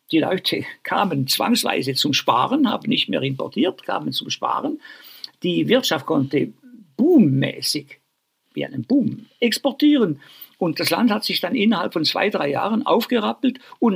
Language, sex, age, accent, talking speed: German, male, 60-79, German, 145 wpm